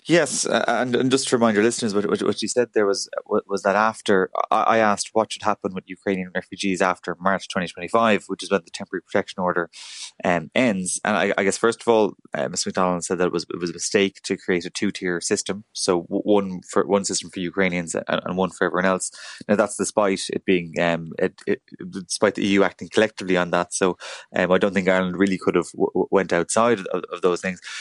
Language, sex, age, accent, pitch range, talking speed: English, male, 20-39, Irish, 95-110 Hz, 235 wpm